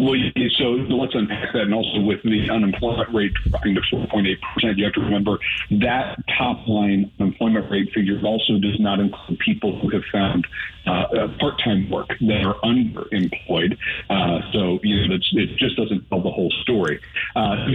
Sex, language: male, English